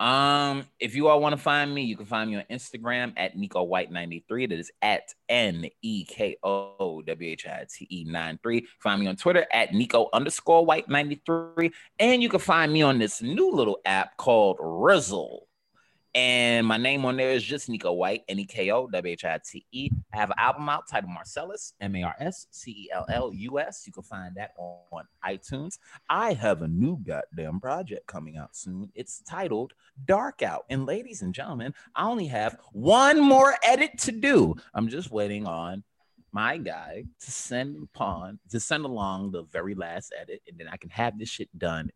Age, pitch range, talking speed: 30-49, 95-140 Hz, 190 wpm